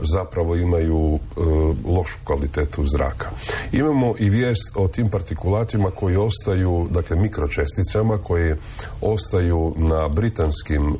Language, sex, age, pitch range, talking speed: Croatian, male, 40-59, 75-100 Hz, 110 wpm